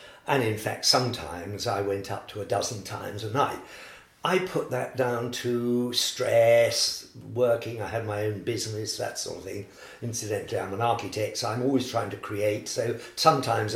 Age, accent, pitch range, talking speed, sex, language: 50-69, British, 110-160 Hz, 180 wpm, male, English